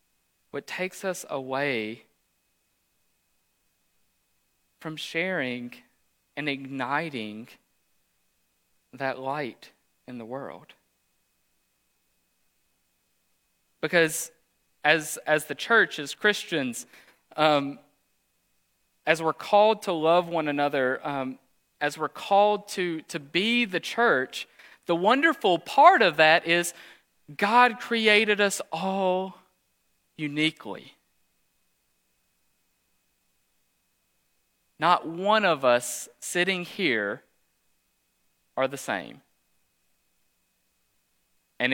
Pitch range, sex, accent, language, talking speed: 125-175 Hz, male, American, English, 85 wpm